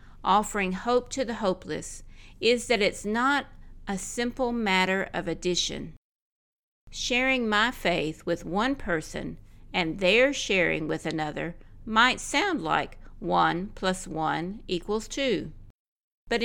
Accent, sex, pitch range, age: American, female, 175-230 Hz, 50-69